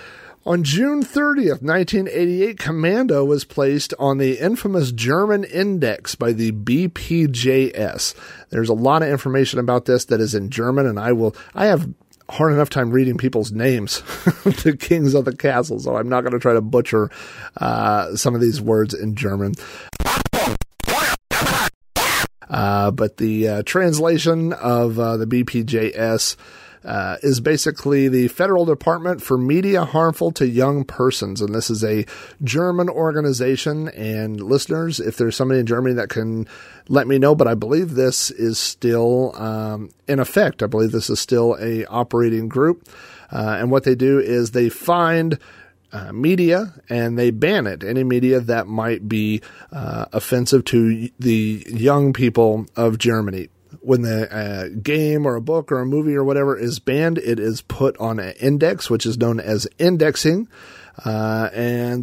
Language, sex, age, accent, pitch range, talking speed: English, male, 40-59, American, 115-150 Hz, 160 wpm